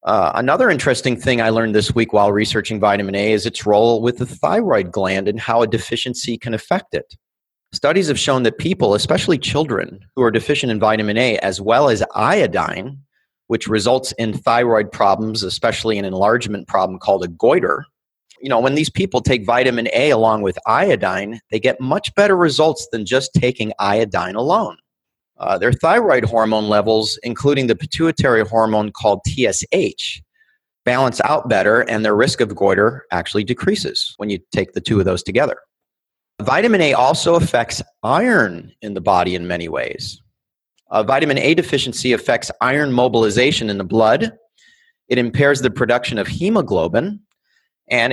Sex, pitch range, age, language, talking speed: male, 110-140 Hz, 30-49, English, 165 wpm